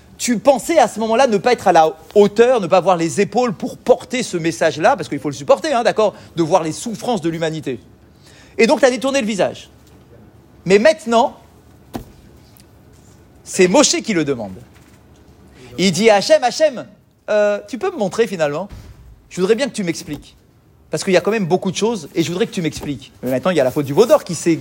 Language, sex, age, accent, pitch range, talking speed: French, male, 40-59, French, 160-235 Hz, 215 wpm